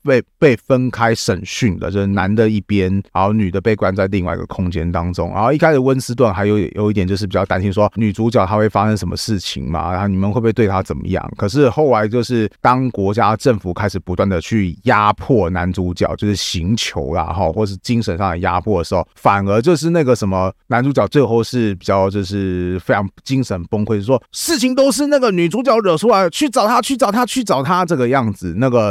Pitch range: 95-120 Hz